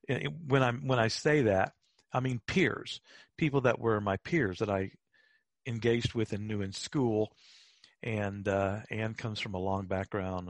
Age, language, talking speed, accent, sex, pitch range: 50-69, English, 170 wpm, American, male, 95-125 Hz